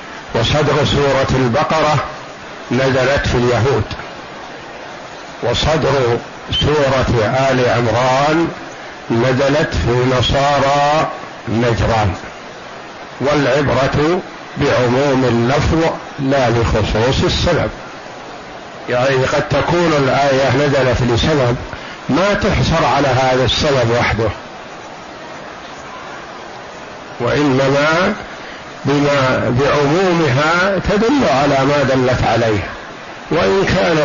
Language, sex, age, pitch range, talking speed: Arabic, male, 50-69, 120-145 Hz, 75 wpm